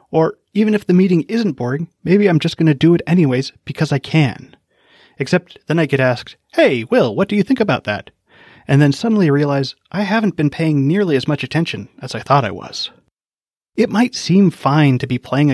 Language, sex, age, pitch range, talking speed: English, male, 30-49, 135-180 Hz, 210 wpm